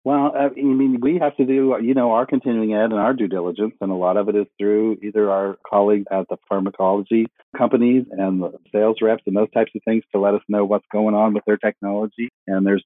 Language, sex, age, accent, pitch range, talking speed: English, male, 50-69, American, 100-125 Hz, 240 wpm